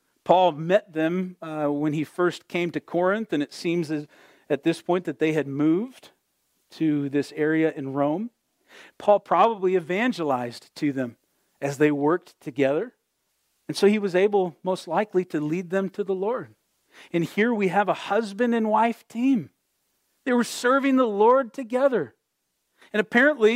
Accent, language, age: American, English, 40-59